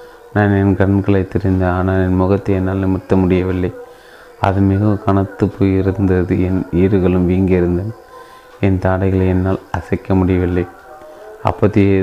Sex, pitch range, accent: male, 90-100 Hz, native